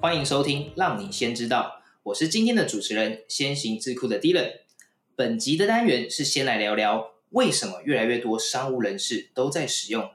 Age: 20-39